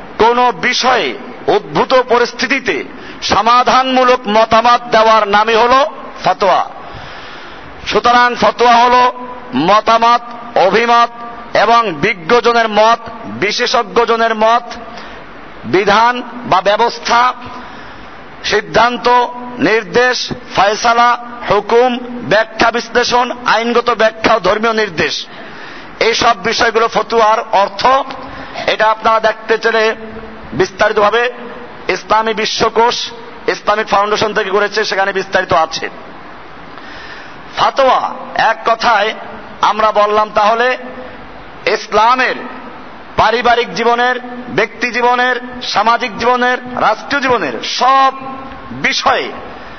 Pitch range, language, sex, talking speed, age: 220-245 Hz, Bengali, male, 85 wpm, 50-69